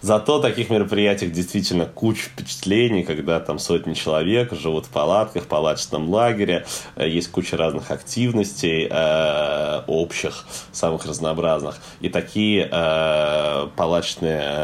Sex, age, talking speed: male, 20-39, 105 wpm